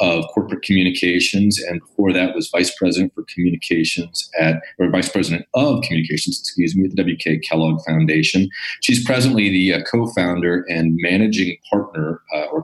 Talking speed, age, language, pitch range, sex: 160 wpm, 40-59, English, 80-105 Hz, male